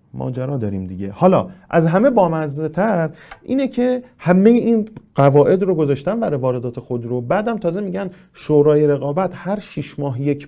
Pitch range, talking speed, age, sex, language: 120-185 Hz, 160 wpm, 30-49, male, Persian